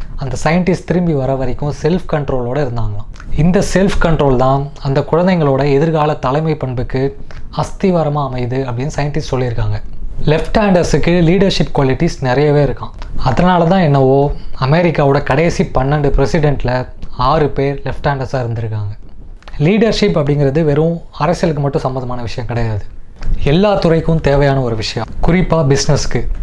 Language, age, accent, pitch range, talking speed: Tamil, 20-39, native, 125-155 Hz, 125 wpm